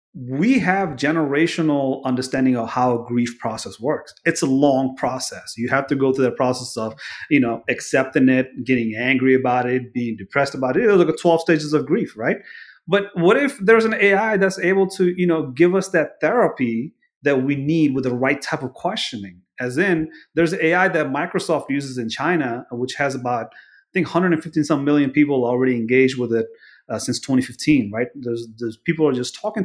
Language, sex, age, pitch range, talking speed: English, male, 30-49, 125-170 Hz, 200 wpm